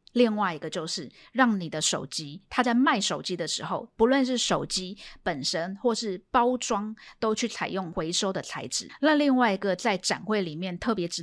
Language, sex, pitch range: Chinese, female, 175-230 Hz